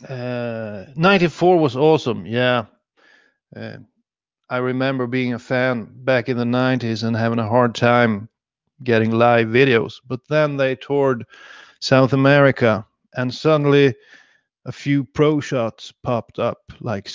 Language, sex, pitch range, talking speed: English, male, 120-140 Hz, 135 wpm